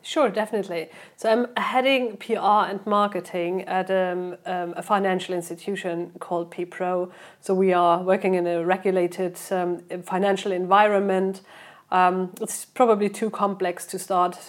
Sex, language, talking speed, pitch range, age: female, Danish, 135 wpm, 180-200 Hz, 30-49